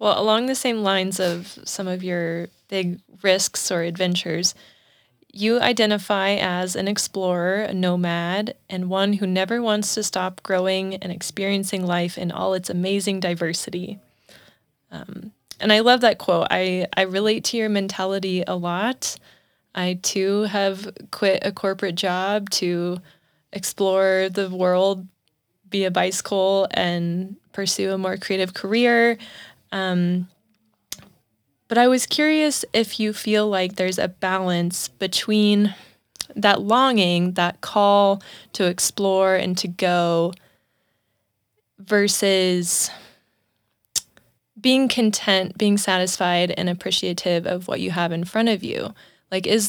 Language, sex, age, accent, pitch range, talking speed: English, female, 20-39, American, 180-205 Hz, 130 wpm